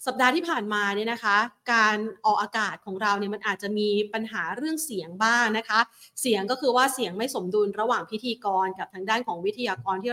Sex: female